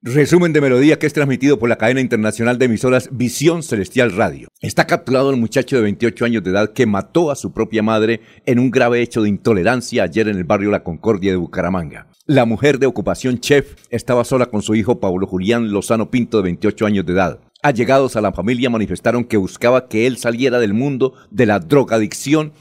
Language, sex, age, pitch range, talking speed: Spanish, male, 50-69, 105-130 Hz, 205 wpm